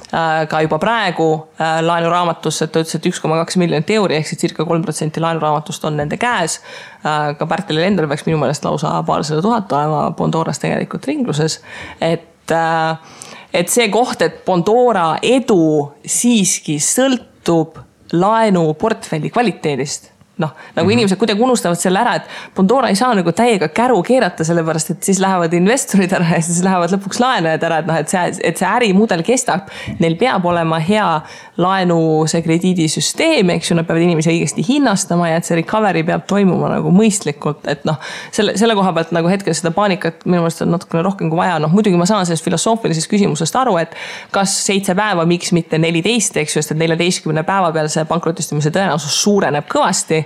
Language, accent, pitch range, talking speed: English, Finnish, 160-200 Hz, 160 wpm